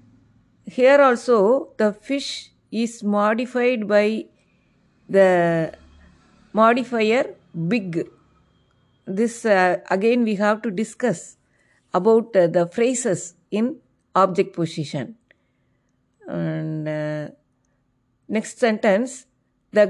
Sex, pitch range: female, 180-245 Hz